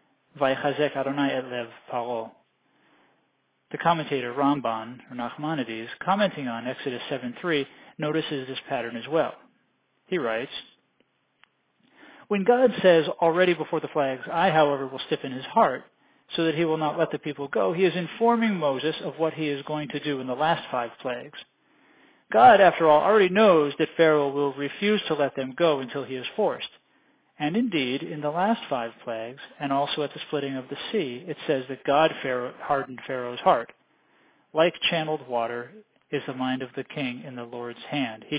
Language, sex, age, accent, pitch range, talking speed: English, male, 40-59, American, 130-170 Hz, 165 wpm